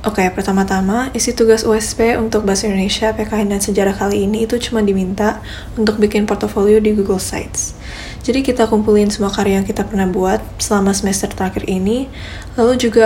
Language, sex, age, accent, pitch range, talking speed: Indonesian, female, 10-29, native, 195-225 Hz, 175 wpm